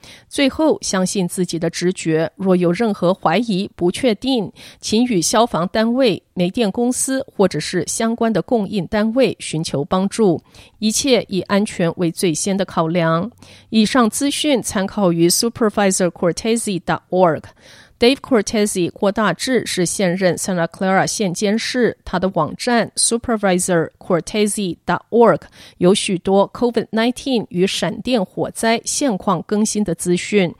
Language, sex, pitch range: Chinese, female, 180-230 Hz